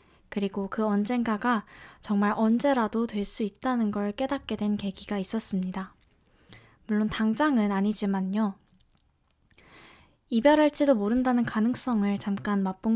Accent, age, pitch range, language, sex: native, 20-39, 205-245 Hz, Korean, female